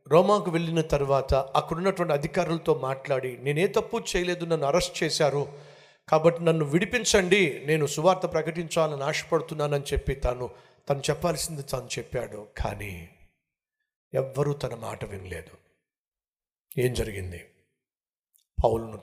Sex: male